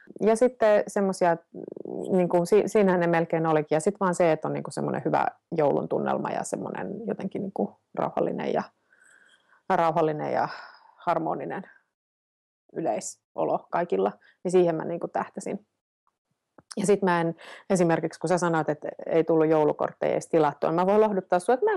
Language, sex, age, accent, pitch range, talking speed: Finnish, female, 30-49, native, 170-255 Hz, 155 wpm